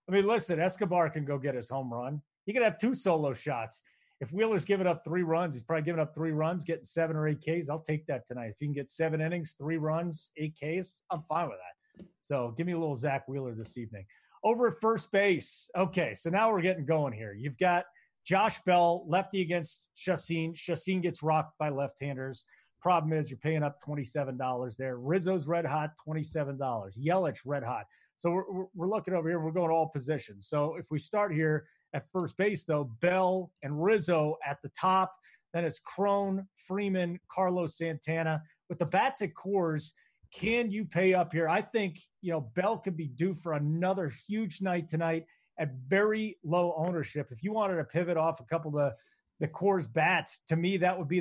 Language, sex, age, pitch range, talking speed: English, male, 30-49, 150-185 Hz, 200 wpm